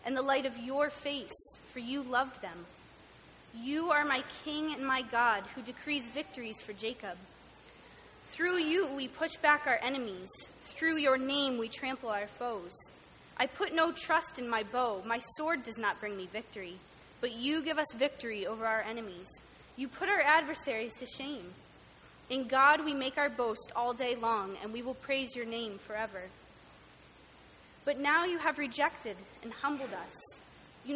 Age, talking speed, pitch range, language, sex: 20-39, 175 wpm, 225-295 Hz, English, female